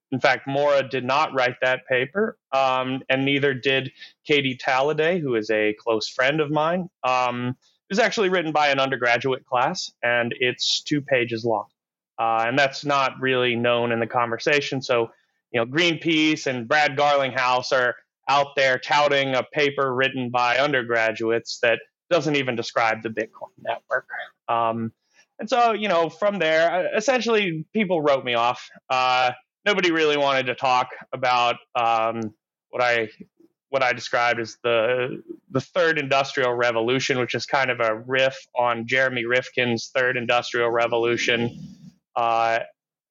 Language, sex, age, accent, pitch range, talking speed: English, male, 30-49, American, 120-150 Hz, 155 wpm